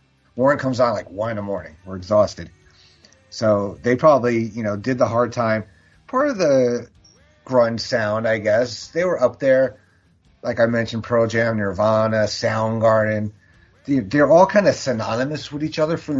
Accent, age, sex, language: American, 30-49, male, English